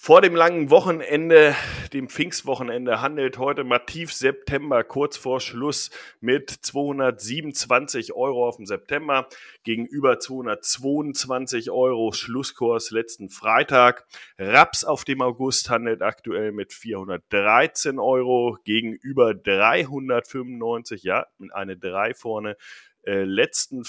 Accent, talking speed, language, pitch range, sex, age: German, 105 wpm, German, 115-145 Hz, male, 30-49